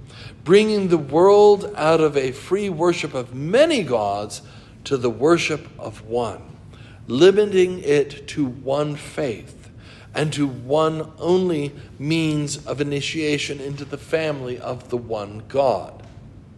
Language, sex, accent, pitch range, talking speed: English, male, American, 115-150 Hz, 125 wpm